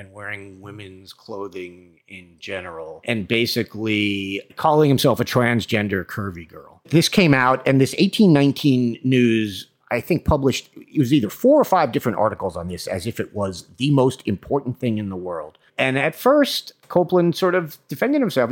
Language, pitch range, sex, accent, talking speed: English, 100-135 Hz, male, American, 170 wpm